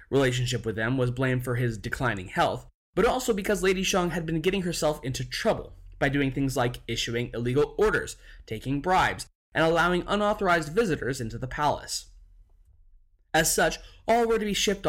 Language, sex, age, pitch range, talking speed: English, male, 20-39, 120-165 Hz, 175 wpm